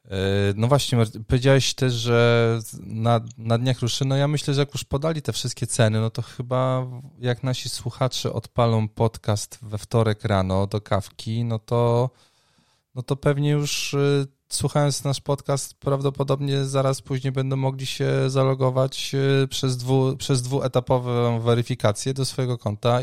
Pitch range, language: 105-130 Hz, Polish